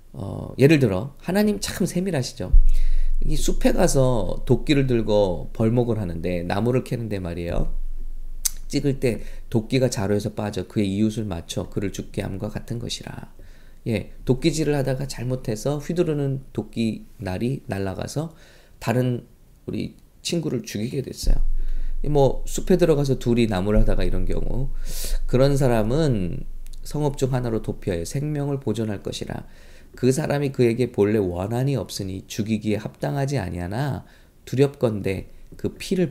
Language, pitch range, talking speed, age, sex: English, 100-135 Hz, 120 wpm, 20-39, male